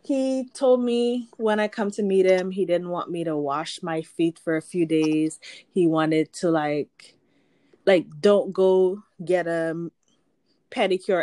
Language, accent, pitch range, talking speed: English, American, 160-205 Hz, 165 wpm